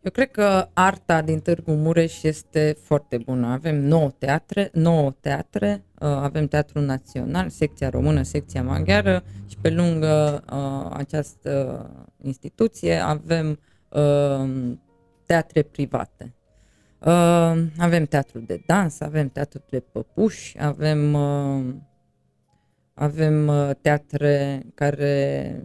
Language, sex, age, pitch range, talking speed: Romanian, female, 20-39, 145-165 Hz, 100 wpm